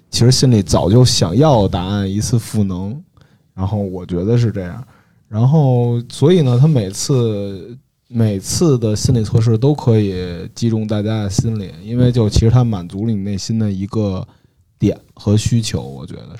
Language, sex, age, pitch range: Chinese, male, 20-39, 100-125 Hz